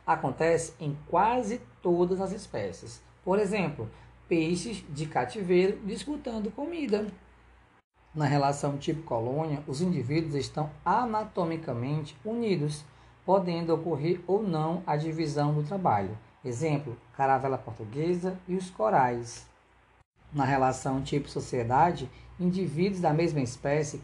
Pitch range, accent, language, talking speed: 135-185 Hz, Brazilian, Portuguese, 110 wpm